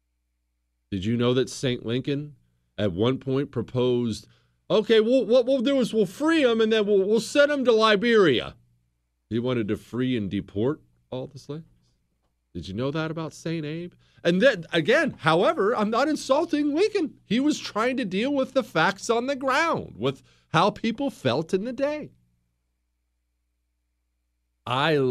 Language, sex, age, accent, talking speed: English, male, 50-69, American, 165 wpm